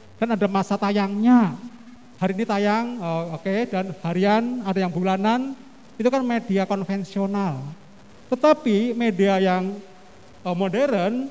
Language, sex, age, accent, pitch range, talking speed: Indonesian, male, 40-59, native, 170-225 Hz, 115 wpm